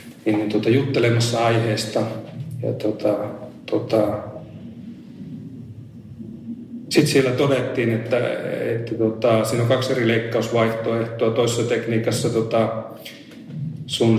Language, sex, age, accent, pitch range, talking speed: Finnish, male, 30-49, native, 110-115 Hz, 90 wpm